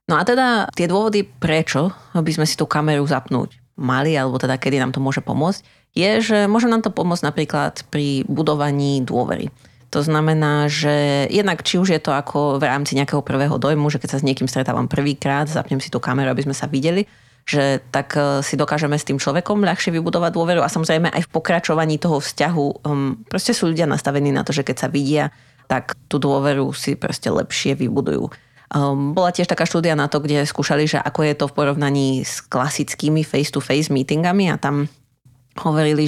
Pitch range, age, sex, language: 140-160 Hz, 30-49, female, Slovak